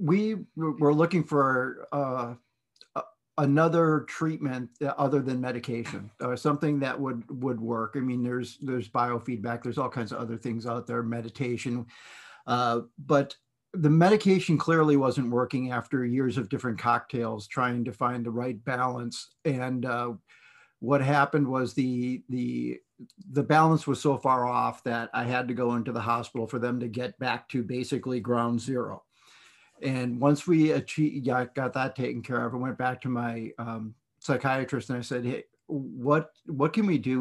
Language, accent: English, American